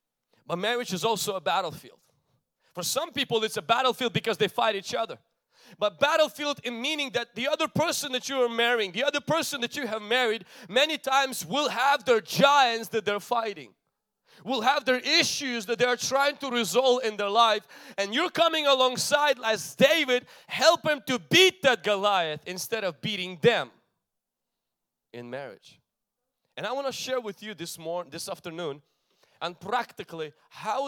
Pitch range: 190-255 Hz